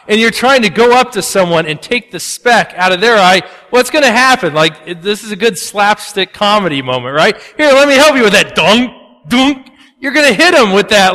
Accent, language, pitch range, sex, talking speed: American, English, 160-205 Hz, male, 250 wpm